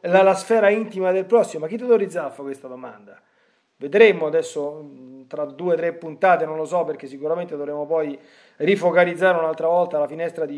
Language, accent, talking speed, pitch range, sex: Italian, native, 195 wpm, 150-205 Hz, male